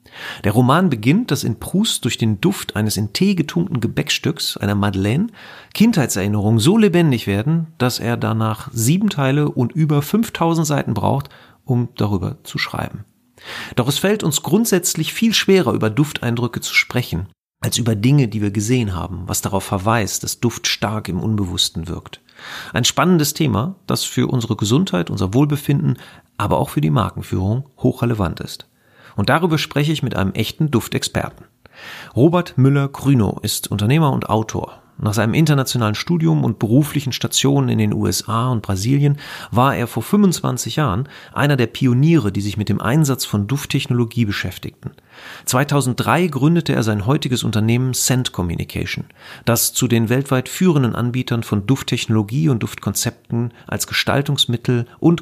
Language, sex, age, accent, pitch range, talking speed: German, male, 40-59, German, 110-145 Hz, 155 wpm